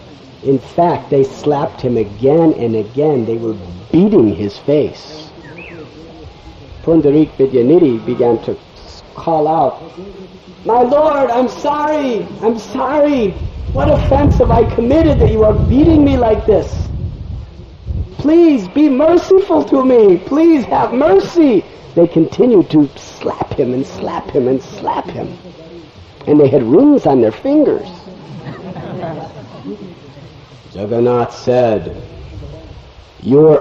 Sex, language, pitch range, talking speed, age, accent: male, English, 135-190 Hz, 120 wpm, 50-69, American